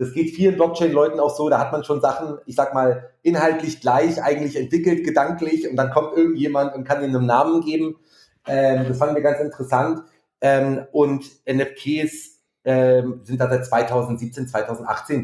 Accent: German